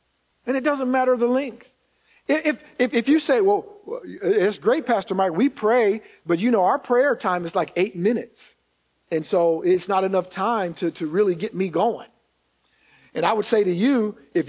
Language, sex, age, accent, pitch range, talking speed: English, male, 50-69, American, 190-270 Hz, 195 wpm